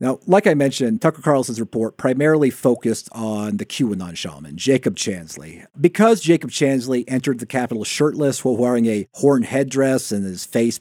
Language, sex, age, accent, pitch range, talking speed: English, male, 40-59, American, 105-130 Hz, 165 wpm